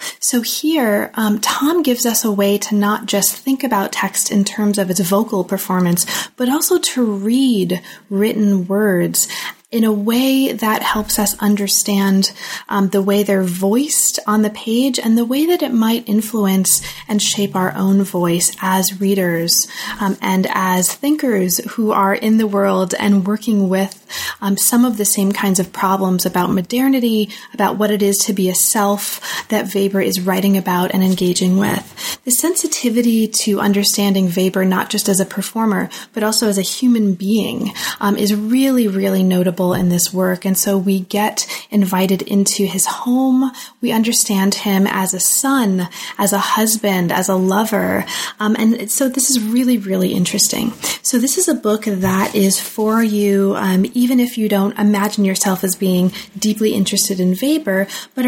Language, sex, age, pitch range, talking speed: English, female, 30-49, 195-230 Hz, 175 wpm